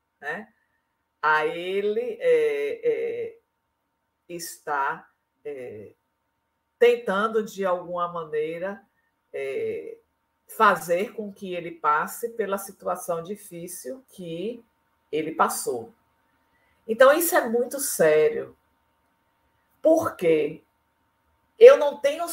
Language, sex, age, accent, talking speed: Portuguese, female, 50-69, Brazilian, 85 wpm